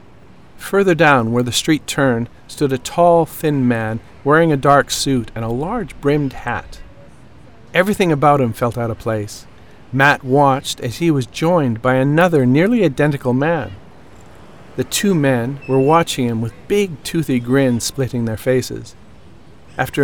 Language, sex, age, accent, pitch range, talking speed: English, male, 50-69, American, 115-150 Hz, 155 wpm